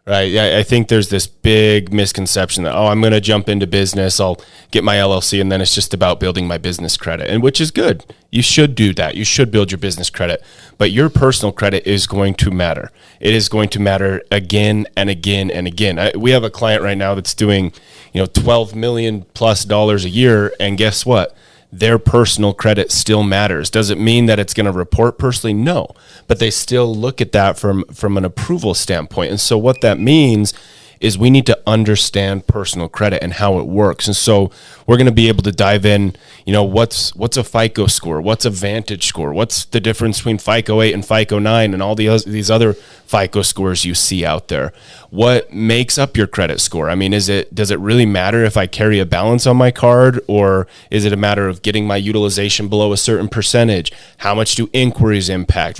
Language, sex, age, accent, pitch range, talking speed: English, male, 30-49, American, 100-115 Hz, 215 wpm